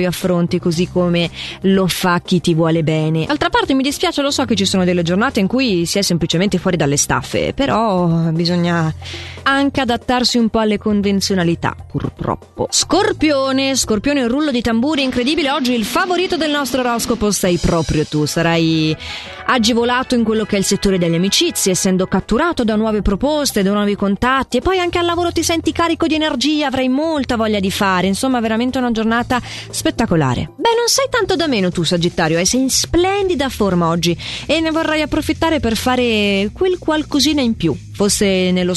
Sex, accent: female, native